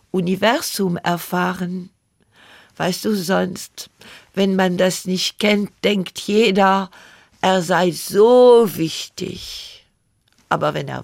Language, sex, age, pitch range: German, female, 50-69, 150-200 Hz